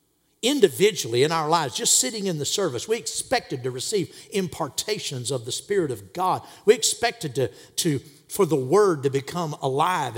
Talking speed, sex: 170 wpm, male